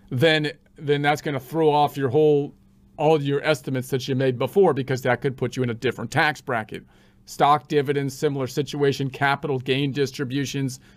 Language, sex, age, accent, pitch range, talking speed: English, male, 40-59, American, 140-165 Hz, 185 wpm